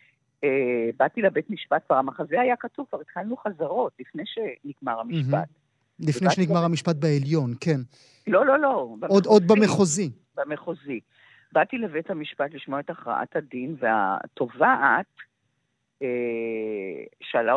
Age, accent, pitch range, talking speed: 50-69, native, 145-235 Hz, 115 wpm